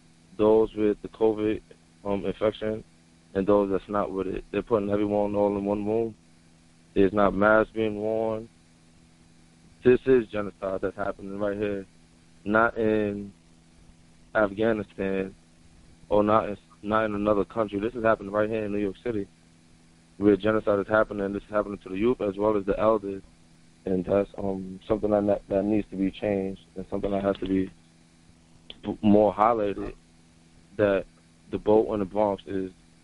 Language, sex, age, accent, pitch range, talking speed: English, male, 20-39, American, 80-105 Hz, 165 wpm